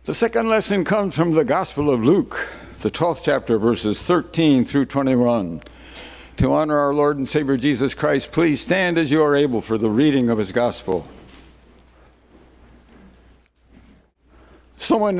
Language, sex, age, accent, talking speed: English, male, 60-79, American, 145 wpm